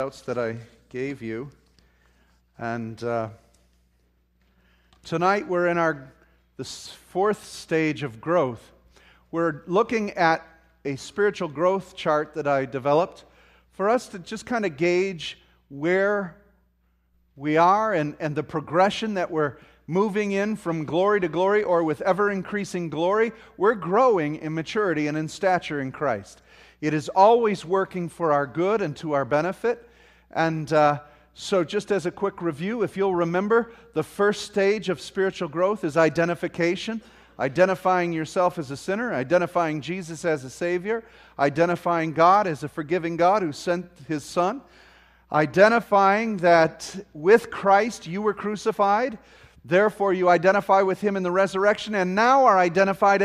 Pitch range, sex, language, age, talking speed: 150-200 Hz, male, English, 40-59, 145 wpm